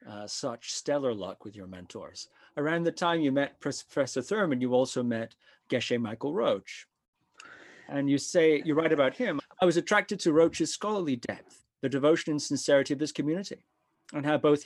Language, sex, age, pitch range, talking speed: English, male, 30-49, 125-160 Hz, 180 wpm